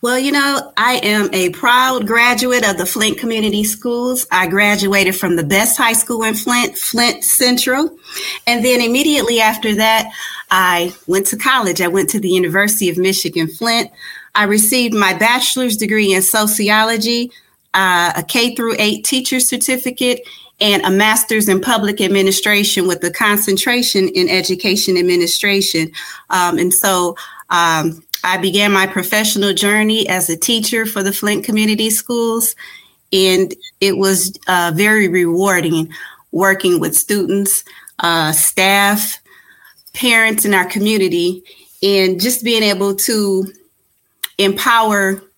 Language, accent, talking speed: English, American, 140 wpm